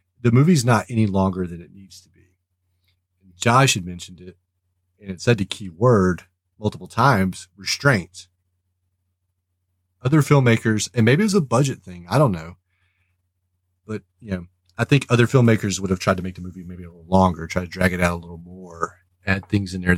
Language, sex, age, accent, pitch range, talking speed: English, male, 30-49, American, 90-110 Hz, 195 wpm